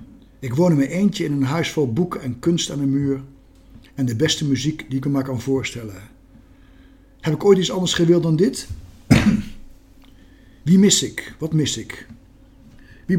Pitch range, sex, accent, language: 115-165 Hz, male, Dutch, Dutch